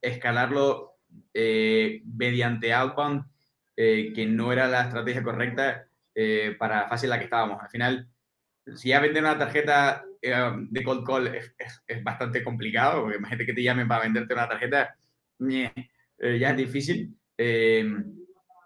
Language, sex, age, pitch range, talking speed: Spanish, male, 20-39, 115-140 Hz, 160 wpm